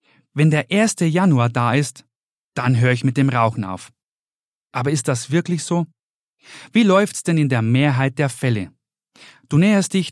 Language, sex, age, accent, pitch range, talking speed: German, male, 40-59, German, 125-160 Hz, 170 wpm